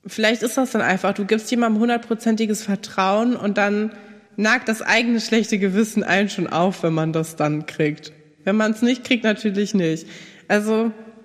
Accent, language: German, German